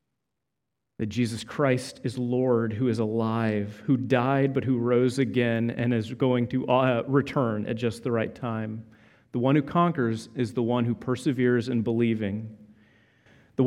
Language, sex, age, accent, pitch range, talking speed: English, male, 30-49, American, 120-170 Hz, 160 wpm